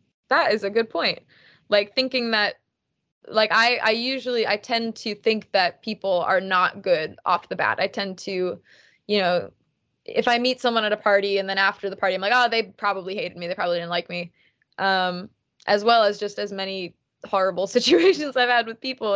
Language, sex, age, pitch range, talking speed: English, female, 20-39, 180-215 Hz, 205 wpm